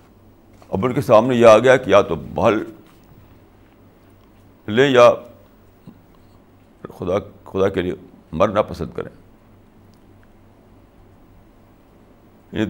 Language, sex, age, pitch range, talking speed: Urdu, male, 60-79, 95-115 Hz, 100 wpm